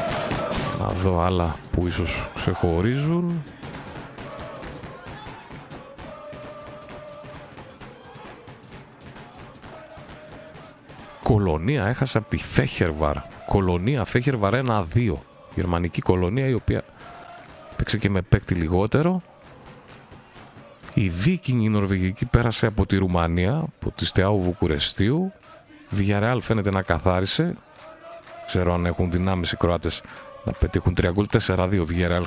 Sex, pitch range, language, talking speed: male, 95-135 Hz, Greek, 90 wpm